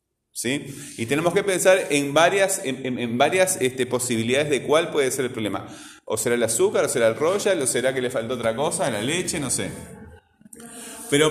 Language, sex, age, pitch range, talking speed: Spanish, male, 30-49, 125-170 Hz, 180 wpm